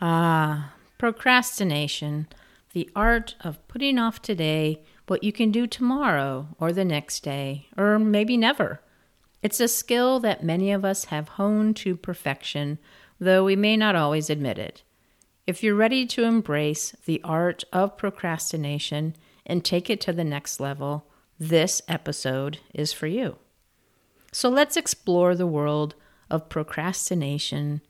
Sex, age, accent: female, 50-69, American